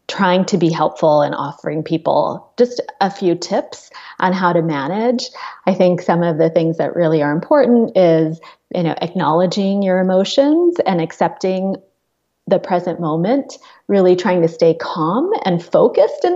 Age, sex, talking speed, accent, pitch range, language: 30-49, female, 160 wpm, American, 165-200 Hz, English